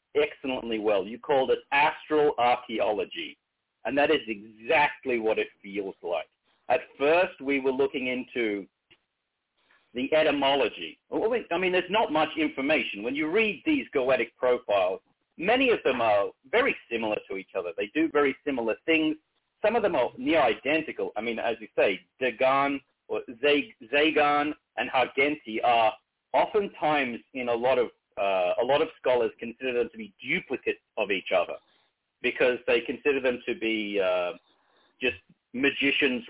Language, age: English, 50-69